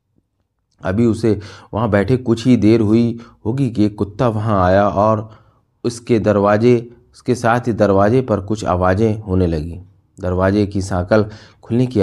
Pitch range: 95-110 Hz